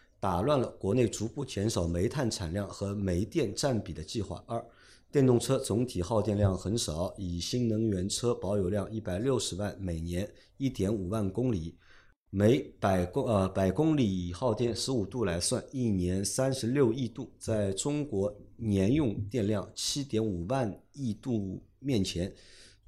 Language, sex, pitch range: Chinese, male, 95-120 Hz